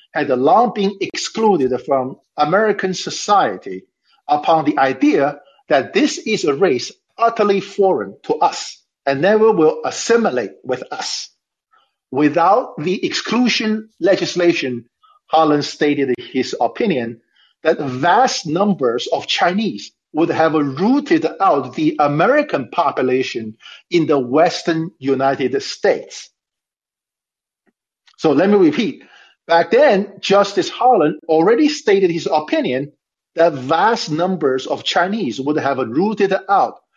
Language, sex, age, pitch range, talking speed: English, male, 50-69, 140-230 Hz, 115 wpm